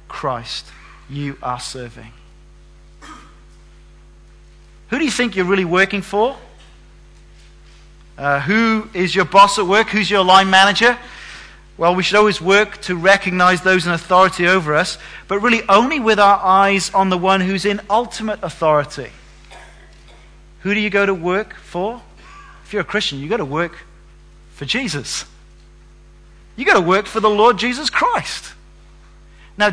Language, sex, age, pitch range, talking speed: English, male, 40-59, 165-200 Hz, 150 wpm